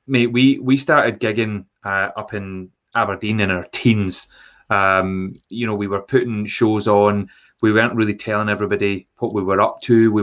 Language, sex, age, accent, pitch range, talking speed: English, male, 30-49, British, 105-120 Hz, 180 wpm